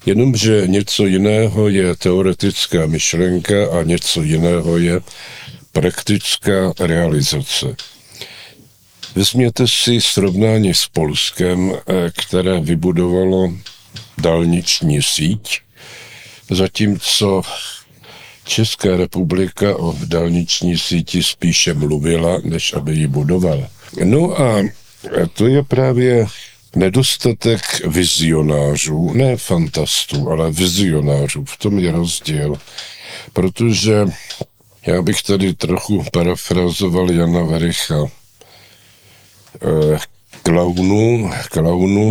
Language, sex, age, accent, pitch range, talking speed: Czech, male, 60-79, native, 85-105 Hz, 80 wpm